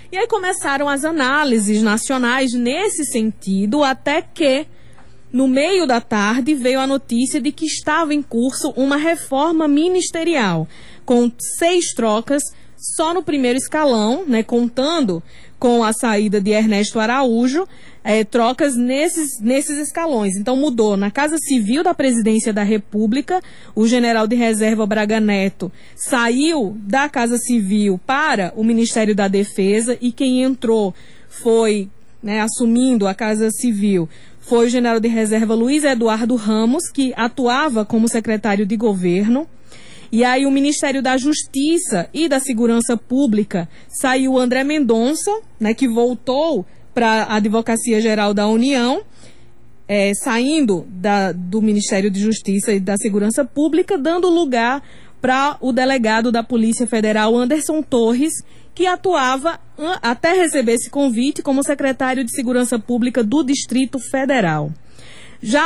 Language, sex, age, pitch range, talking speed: Portuguese, female, 20-39, 220-280 Hz, 135 wpm